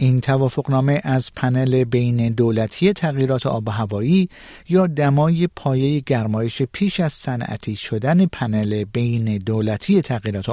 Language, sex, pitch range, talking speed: Persian, male, 115-170 Hz, 125 wpm